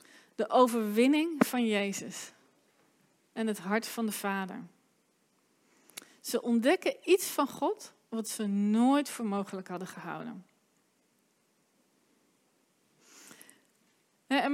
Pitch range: 220-275 Hz